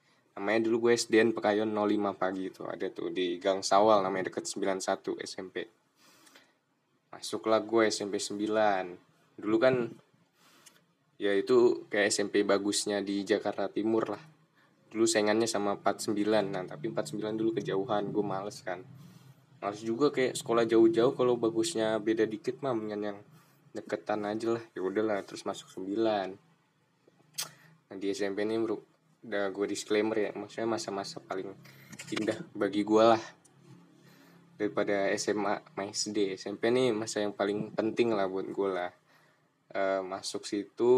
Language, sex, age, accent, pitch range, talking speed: Indonesian, male, 10-29, native, 100-115 Hz, 145 wpm